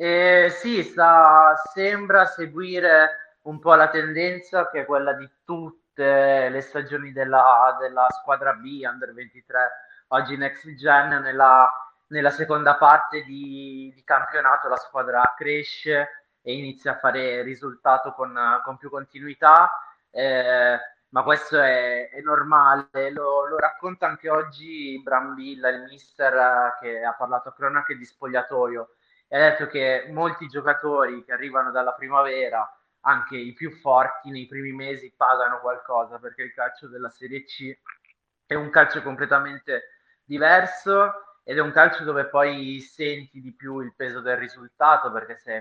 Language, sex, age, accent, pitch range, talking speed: Italian, male, 20-39, native, 125-155 Hz, 145 wpm